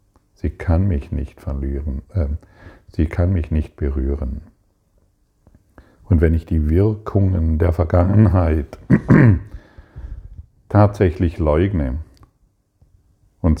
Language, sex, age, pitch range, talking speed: German, male, 50-69, 75-95 Hz, 95 wpm